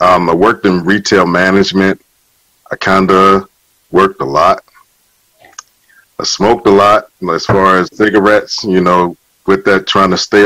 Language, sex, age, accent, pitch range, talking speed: English, male, 40-59, American, 95-110 Hz, 150 wpm